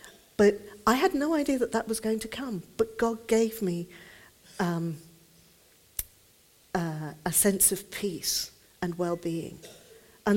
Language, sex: English, female